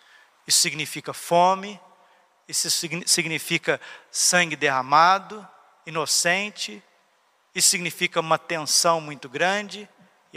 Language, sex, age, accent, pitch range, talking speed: Portuguese, male, 50-69, Brazilian, 160-190 Hz, 85 wpm